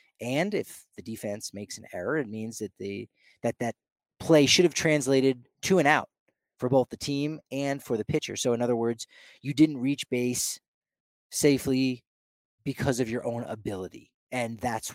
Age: 30-49